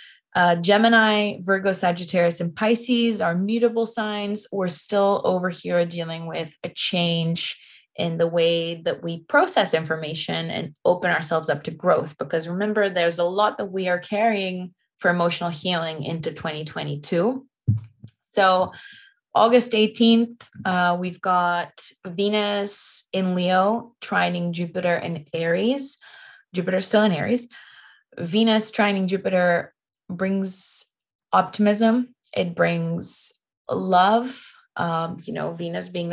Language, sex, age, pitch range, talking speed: English, female, 20-39, 175-220 Hz, 125 wpm